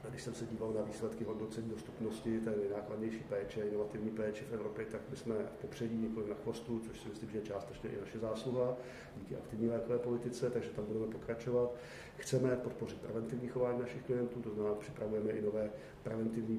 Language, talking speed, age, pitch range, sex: Czech, 195 wpm, 50-69, 105-115 Hz, male